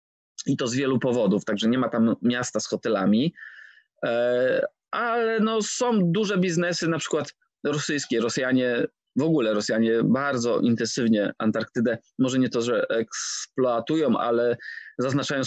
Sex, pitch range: male, 120-165 Hz